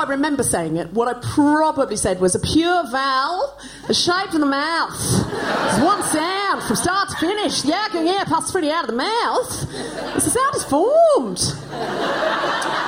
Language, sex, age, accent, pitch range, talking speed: English, female, 40-59, British, 255-370 Hz, 165 wpm